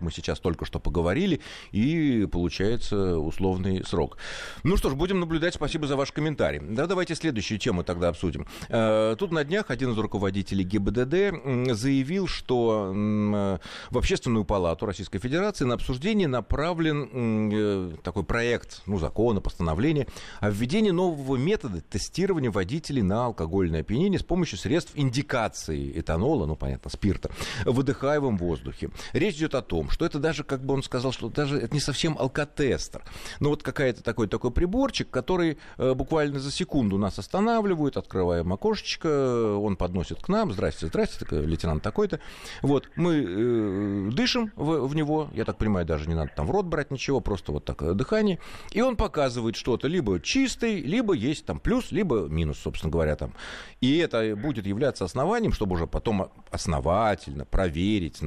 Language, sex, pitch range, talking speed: Russian, male, 90-150 Hz, 160 wpm